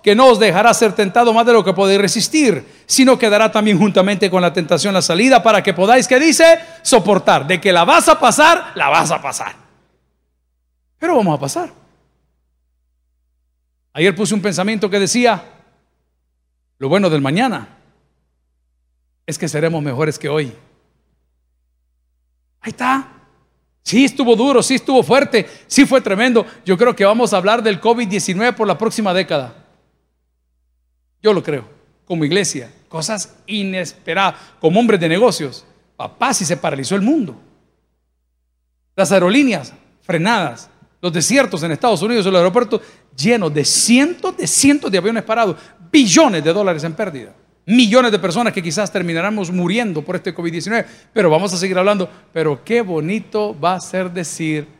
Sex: male